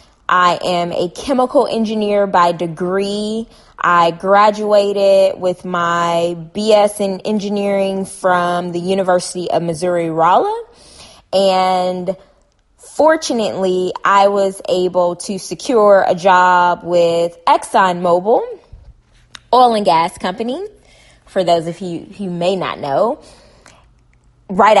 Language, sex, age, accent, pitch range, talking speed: English, female, 20-39, American, 170-205 Hz, 105 wpm